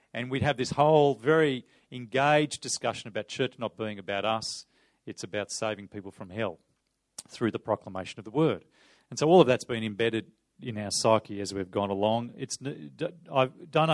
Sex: male